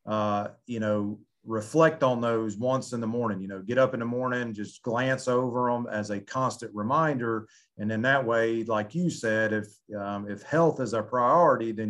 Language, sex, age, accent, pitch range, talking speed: English, male, 40-59, American, 105-125 Hz, 200 wpm